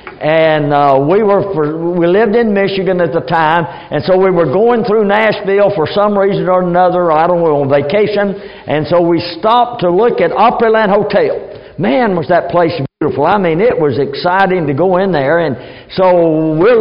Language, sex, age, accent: English, male, 60-79, American